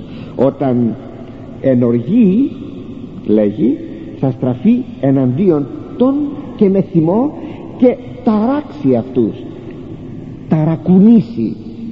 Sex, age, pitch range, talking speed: male, 50-69, 135-225 Hz, 70 wpm